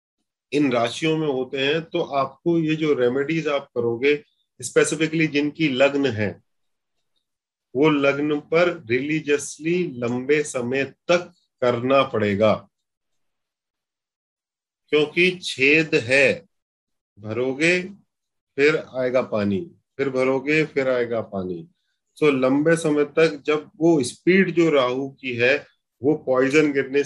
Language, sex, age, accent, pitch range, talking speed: Hindi, male, 40-59, native, 125-165 Hz, 115 wpm